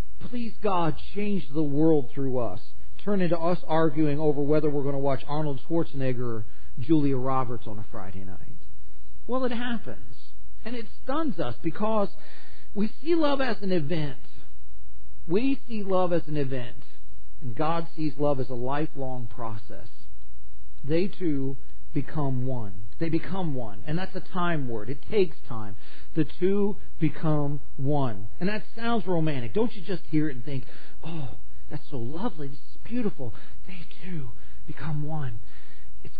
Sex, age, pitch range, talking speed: male, 40-59, 130-215 Hz, 160 wpm